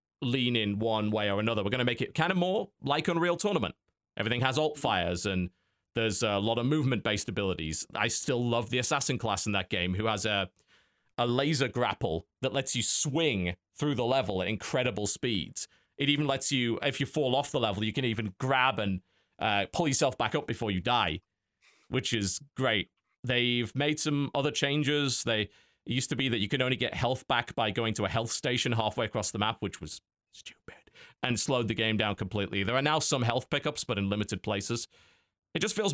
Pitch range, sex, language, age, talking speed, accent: 105-135 Hz, male, English, 30-49, 215 wpm, British